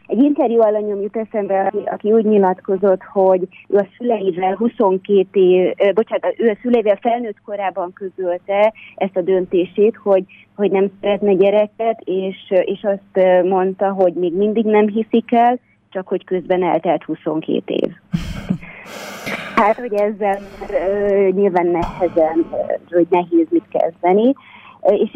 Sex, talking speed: female, 140 wpm